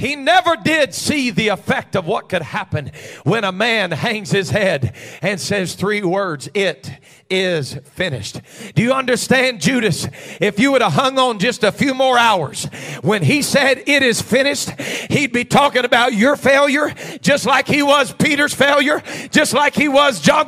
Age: 40-59